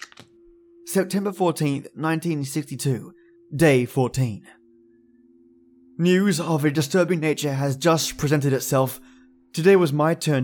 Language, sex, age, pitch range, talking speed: English, male, 20-39, 140-180 Hz, 105 wpm